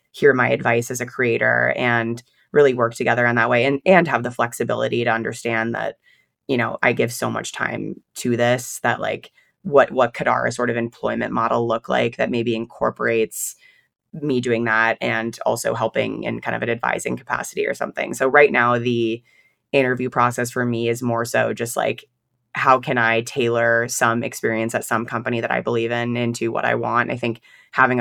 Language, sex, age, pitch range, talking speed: English, female, 20-39, 115-125 Hz, 195 wpm